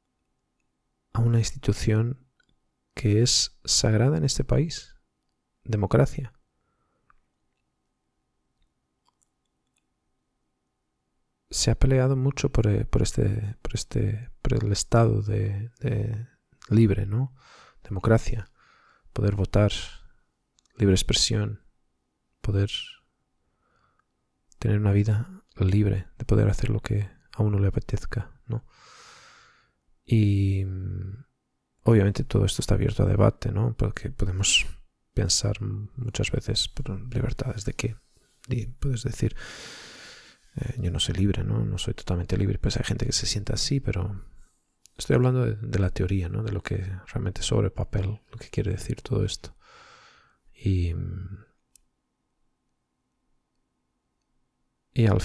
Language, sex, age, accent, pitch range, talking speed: Portuguese, male, 20-39, Spanish, 95-115 Hz, 115 wpm